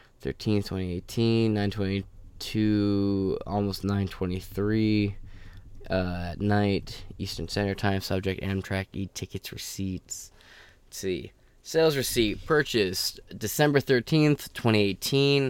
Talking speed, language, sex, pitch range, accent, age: 95 wpm, English, male, 95-110 Hz, American, 20-39